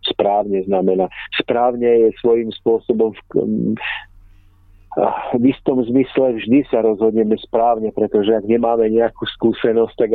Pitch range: 95-110 Hz